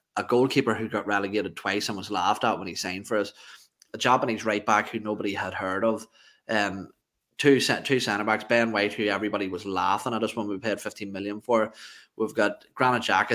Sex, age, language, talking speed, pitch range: male, 20-39, English, 210 wpm, 105-120 Hz